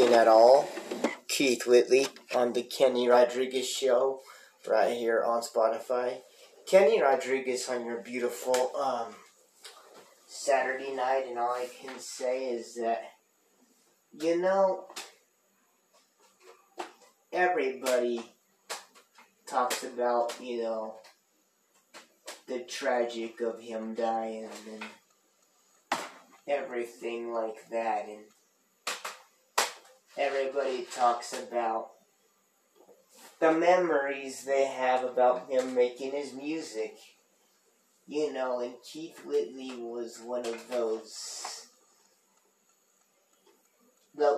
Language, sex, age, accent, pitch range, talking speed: English, male, 30-49, American, 120-140 Hz, 90 wpm